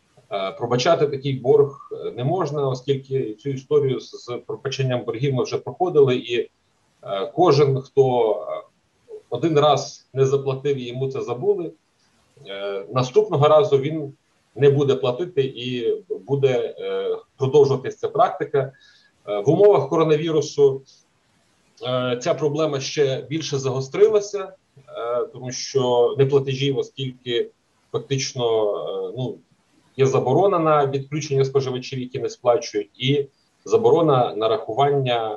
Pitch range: 130-180 Hz